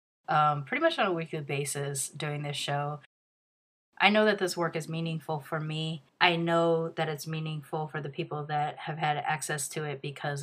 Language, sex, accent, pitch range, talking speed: English, female, American, 155-185 Hz, 195 wpm